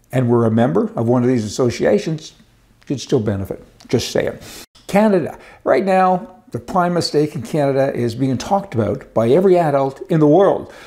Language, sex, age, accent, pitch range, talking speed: English, male, 60-79, American, 120-185 Hz, 180 wpm